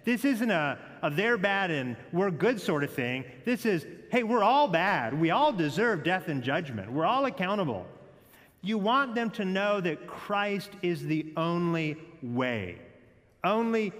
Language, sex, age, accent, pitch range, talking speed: English, male, 40-59, American, 155-230 Hz, 165 wpm